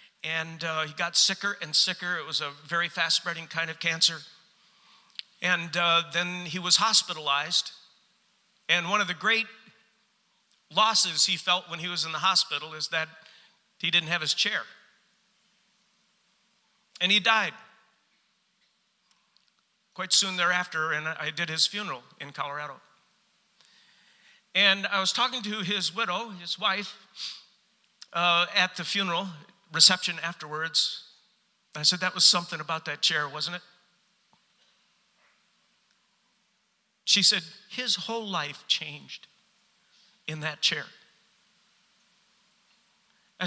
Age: 50-69